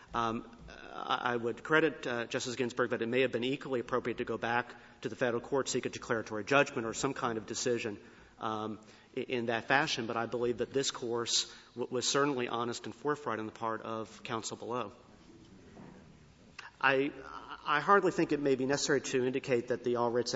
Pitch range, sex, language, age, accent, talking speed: 110-130 Hz, male, English, 40-59, American, 190 wpm